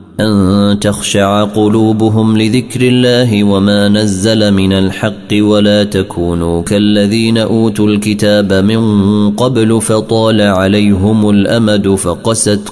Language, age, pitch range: Arabic, 30-49, 95-110 Hz